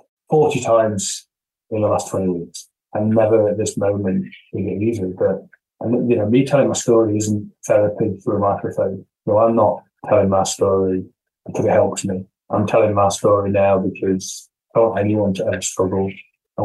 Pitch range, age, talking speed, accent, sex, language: 100-115 Hz, 20-39, 185 wpm, British, male, English